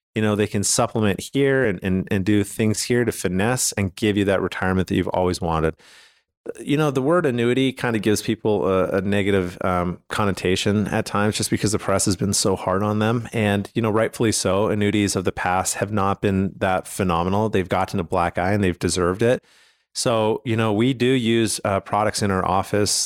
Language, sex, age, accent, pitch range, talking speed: English, male, 30-49, American, 95-115 Hz, 215 wpm